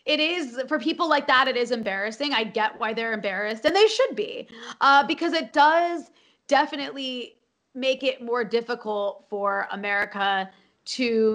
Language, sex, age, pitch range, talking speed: English, female, 20-39, 200-260 Hz, 160 wpm